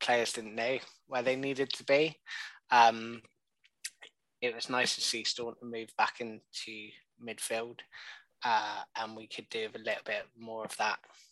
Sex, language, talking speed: male, English, 160 wpm